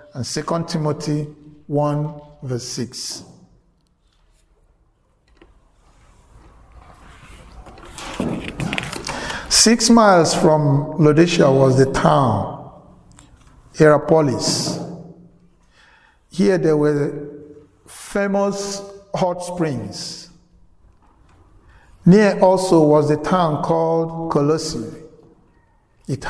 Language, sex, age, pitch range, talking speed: English, male, 60-79, 135-165 Hz, 65 wpm